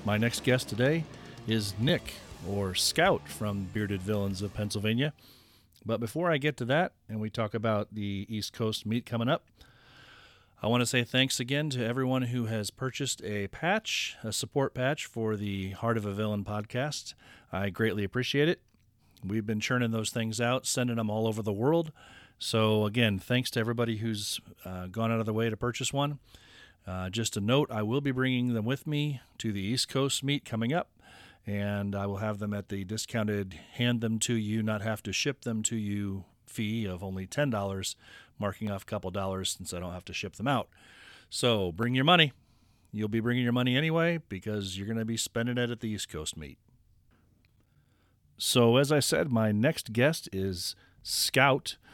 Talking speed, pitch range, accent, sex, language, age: 185 wpm, 100-125 Hz, American, male, English, 40-59